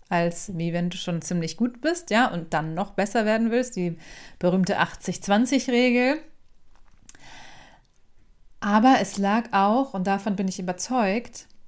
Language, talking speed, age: German, 140 wpm, 30-49